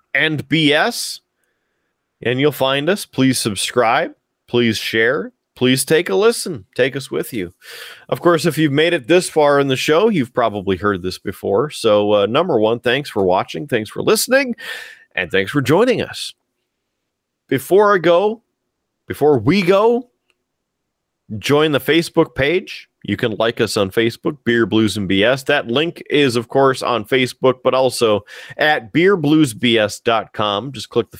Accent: American